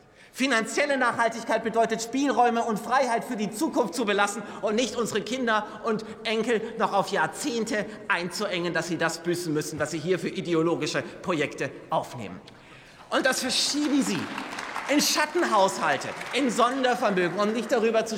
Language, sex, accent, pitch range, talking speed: German, male, German, 195-240 Hz, 150 wpm